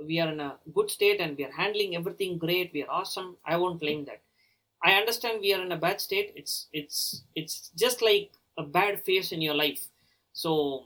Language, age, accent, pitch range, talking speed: Czech, 30-49, Indian, 150-205 Hz, 215 wpm